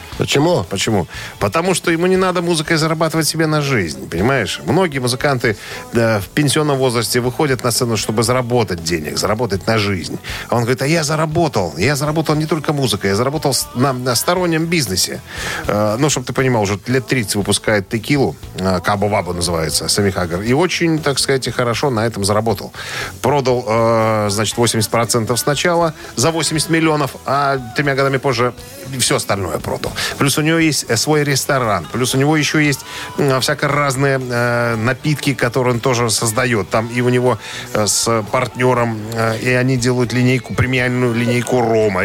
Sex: male